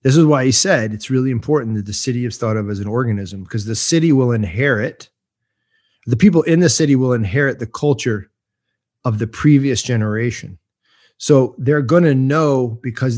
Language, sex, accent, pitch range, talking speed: English, male, American, 105-140 Hz, 185 wpm